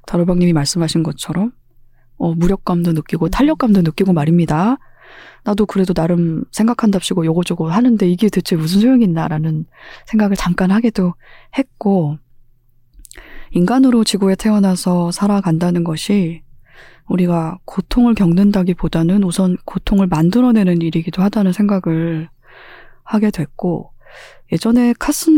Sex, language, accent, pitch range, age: female, Korean, native, 165-215 Hz, 20-39